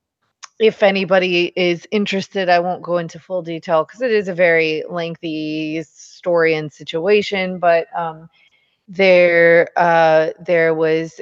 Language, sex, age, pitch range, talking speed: English, female, 30-49, 160-205 Hz, 135 wpm